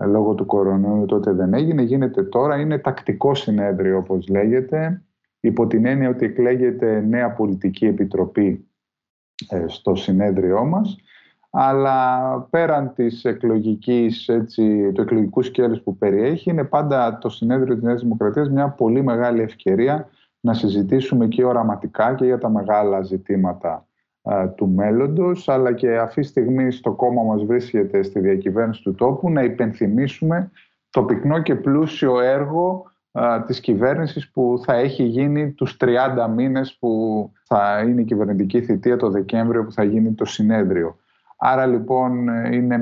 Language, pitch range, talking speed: Greek, 110-130 Hz, 140 wpm